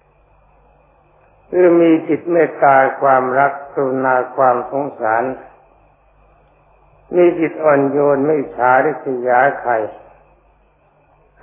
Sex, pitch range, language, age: male, 125-155 Hz, Thai, 60-79